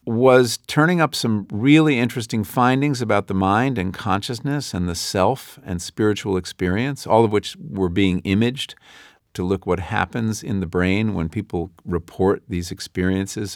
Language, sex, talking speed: English, male, 160 wpm